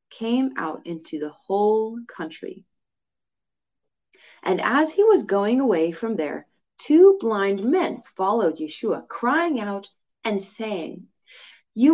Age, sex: 30-49, female